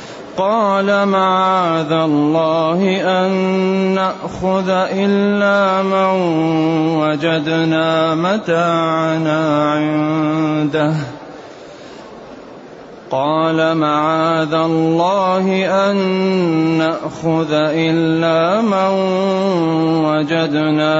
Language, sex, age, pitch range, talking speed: Arabic, male, 30-49, 155-185 Hz, 50 wpm